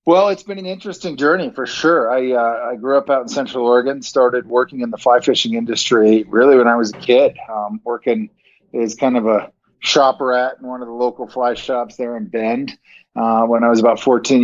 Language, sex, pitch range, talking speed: English, male, 120-135 Hz, 225 wpm